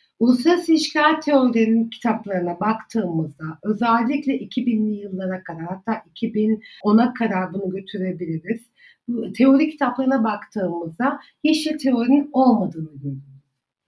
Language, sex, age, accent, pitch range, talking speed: Turkish, female, 60-79, native, 215-270 Hz, 85 wpm